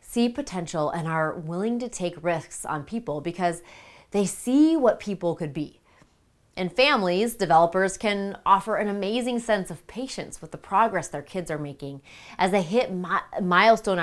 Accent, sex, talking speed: American, female, 165 wpm